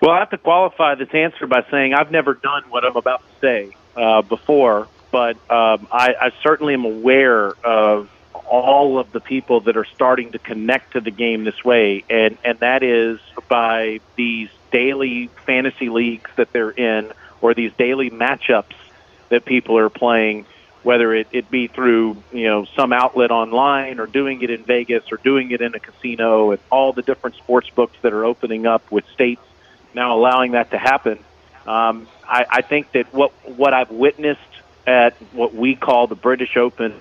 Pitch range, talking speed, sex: 115-130 Hz, 185 wpm, male